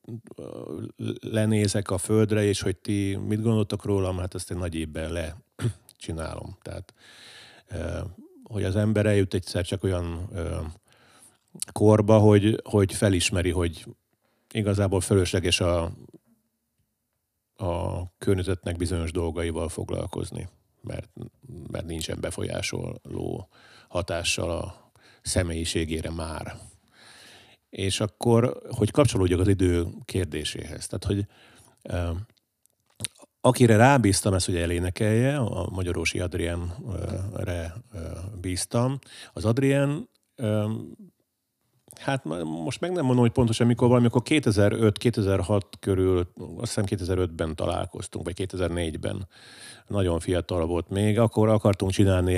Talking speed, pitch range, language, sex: 100 wpm, 90-110 Hz, Hungarian, male